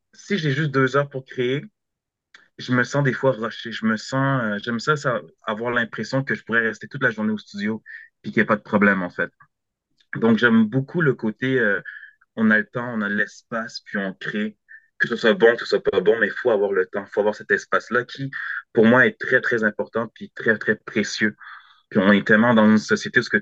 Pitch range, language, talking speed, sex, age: 110-180 Hz, French, 240 wpm, male, 30-49